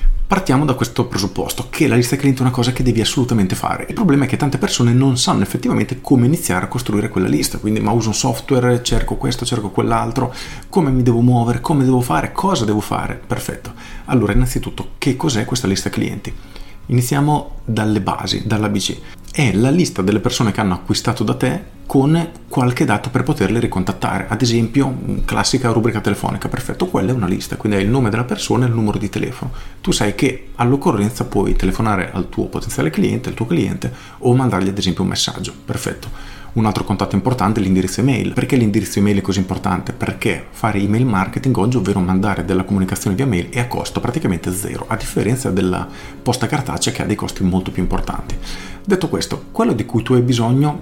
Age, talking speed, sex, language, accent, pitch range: 40-59, 195 wpm, male, Italian, native, 100-125 Hz